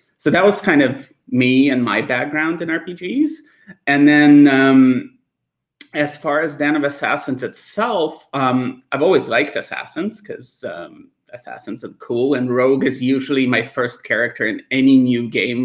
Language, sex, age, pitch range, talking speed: English, male, 30-49, 125-150 Hz, 160 wpm